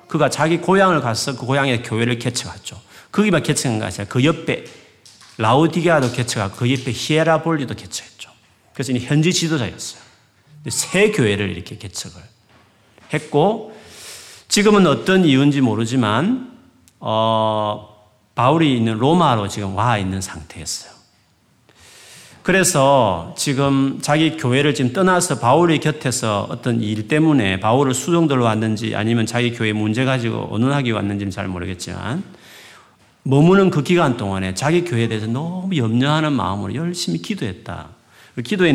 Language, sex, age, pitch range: Korean, male, 40-59, 105-150 Hz